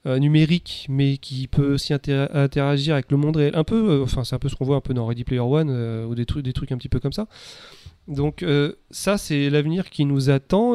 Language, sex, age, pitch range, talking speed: French, male, 30-49, 130-150 Hz, 250 wpm